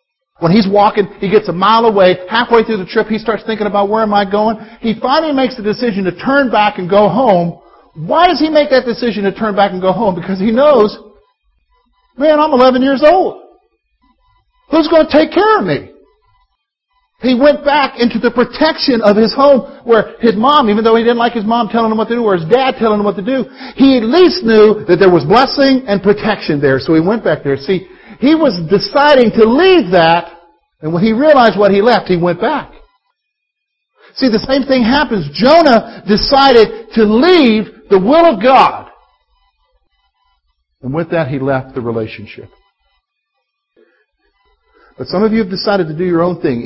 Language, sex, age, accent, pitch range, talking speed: English, male, 50-69, American, 200-280 Hz, 200 wpm